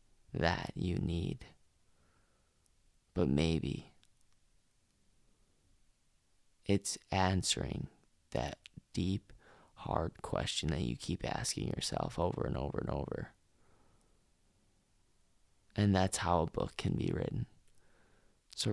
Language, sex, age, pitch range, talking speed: English, male, 20-39, 80-105 Hz, 95 wpm